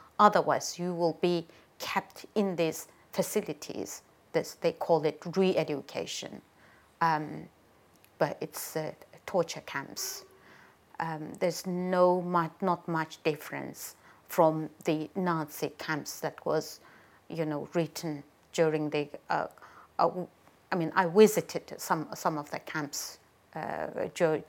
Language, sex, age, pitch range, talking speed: English, female, 30-49, 150-175 Hz, 120 wpm